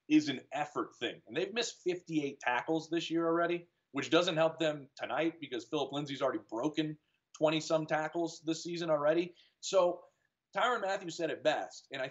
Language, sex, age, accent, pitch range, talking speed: English, male, 30-49, American, 145-190 Hz, 180 wpm